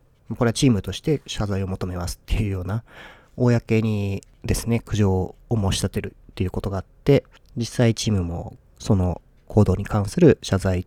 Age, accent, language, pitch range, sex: 40-59, native, Japanese, 95-120 Hz, male